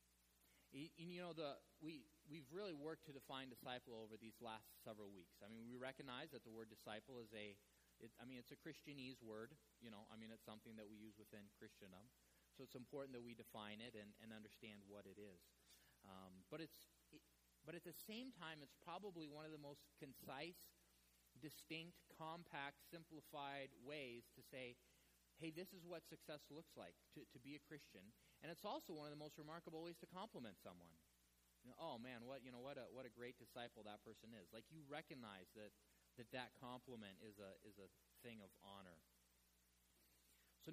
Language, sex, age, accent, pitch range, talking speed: English, male, 30-49, American, 105-150 Hz, 195 wpm